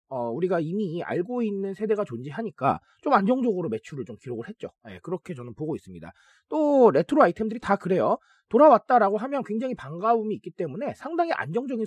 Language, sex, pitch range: Korean, male, 170-235 Hz